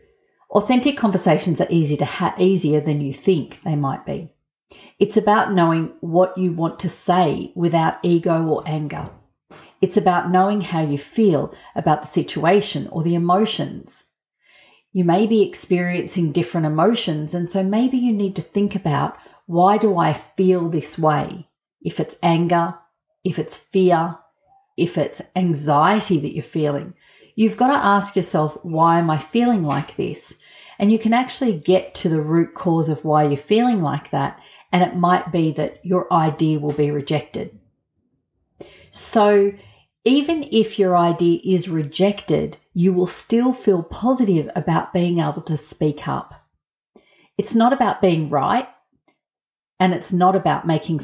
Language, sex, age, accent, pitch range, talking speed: English, female, 40-59, Australian, 155-200 Hz, 155 wpm